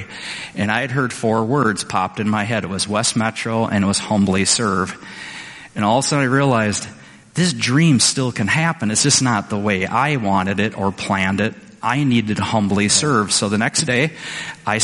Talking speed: 210 wpm